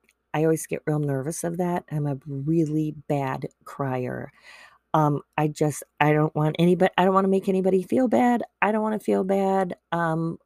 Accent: American